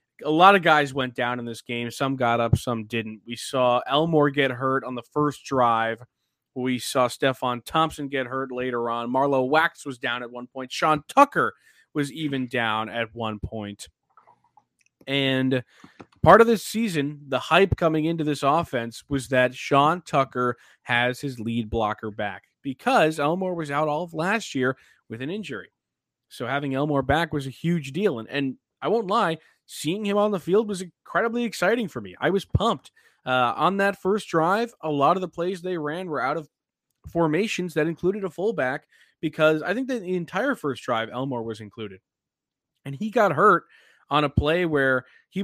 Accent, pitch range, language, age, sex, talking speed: American, 125-170 Hz, English, 20-39, male, 190 wpm